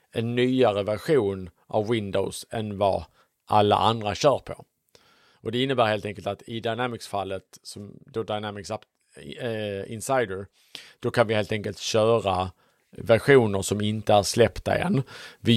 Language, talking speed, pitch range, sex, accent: English, 135 wpm, 100-125 Hz, male, Norwegian